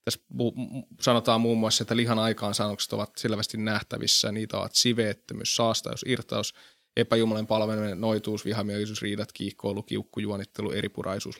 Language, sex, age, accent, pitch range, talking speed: Finnish, male, 20-39, native, 110-125 Hz, 125 wpm